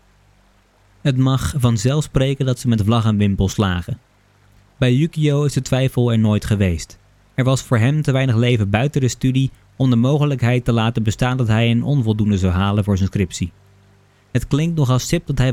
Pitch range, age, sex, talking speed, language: 105-130 Hz, 20-39, male, 195 wpm, Dutch